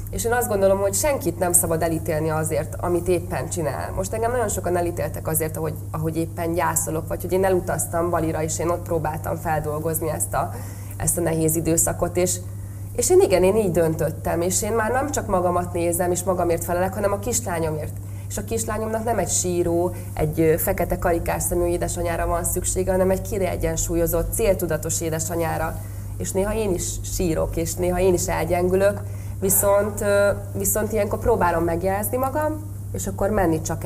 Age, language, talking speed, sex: 20-39, Hungarian, 175 wpm, female